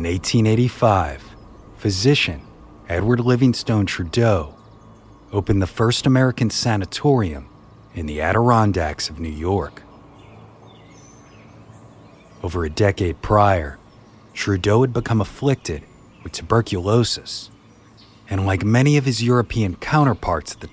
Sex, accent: male, American